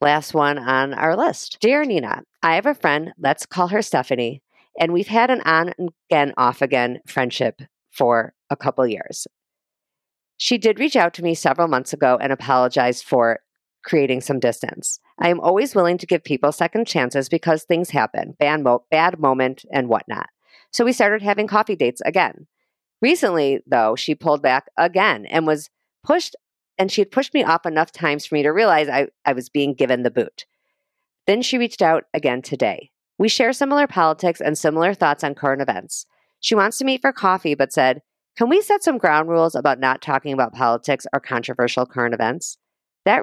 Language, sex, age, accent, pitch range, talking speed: English, female, 40-59, American, 135-190 Hz, 185 wpm